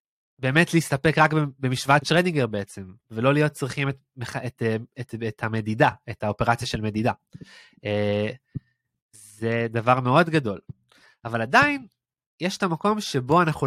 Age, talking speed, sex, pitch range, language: 20-39, 125 wpm, male, 120-160 Hz, Hebrew